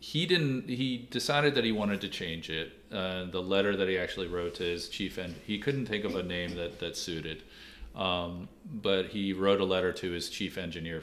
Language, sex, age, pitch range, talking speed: English, male, 40-59, 85-100 Hz, 225 wpm